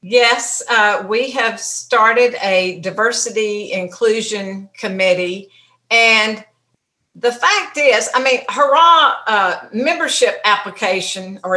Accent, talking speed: American, 105 wpm